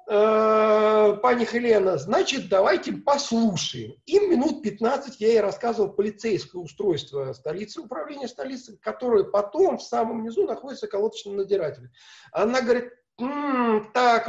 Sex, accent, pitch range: male, native, 175-260 Hz